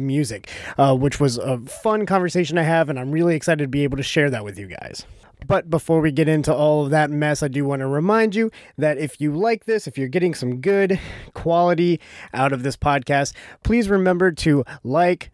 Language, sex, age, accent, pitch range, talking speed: English, male, 20-39, American, 135-170 Hz, 220 wpm